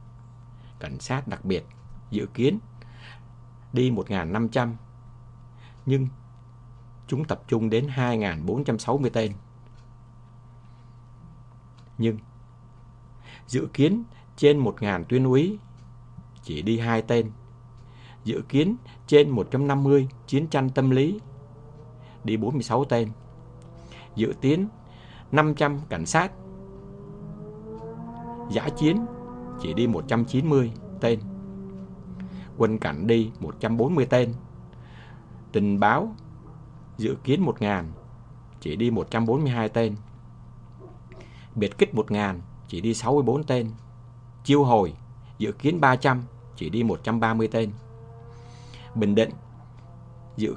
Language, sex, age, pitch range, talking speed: English, male, 60-79, 115-125 Hz, 110 wpm